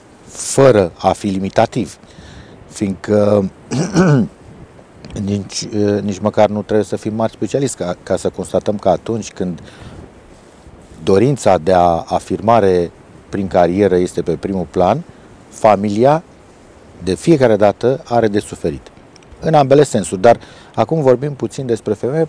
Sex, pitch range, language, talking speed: male, 95-115 Hz, Romanian, 125 wpm